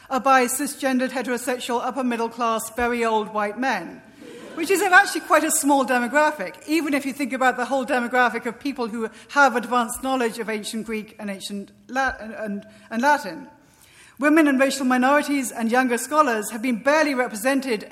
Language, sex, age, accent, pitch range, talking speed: English, female, 40-59, British, 220-265 Hz, 165 wpm